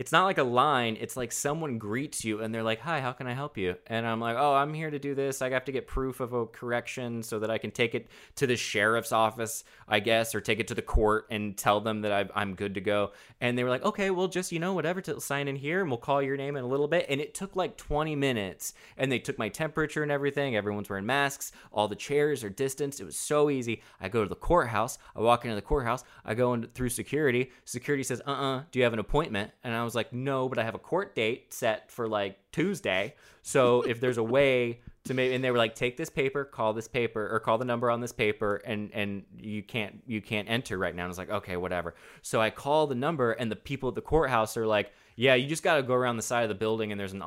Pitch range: 105-135 Hz